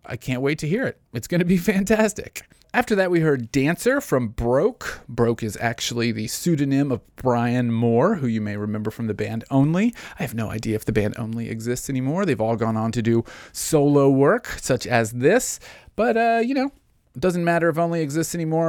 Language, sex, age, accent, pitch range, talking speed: English, male, 30-49, American, 115-150 Hz, 210 wpm